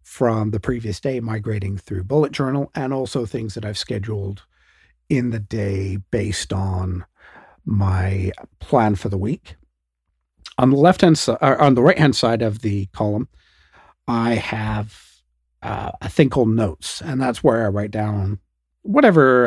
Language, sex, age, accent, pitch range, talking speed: English, male, 50-69, American, 100-135 Hz, 160 wpm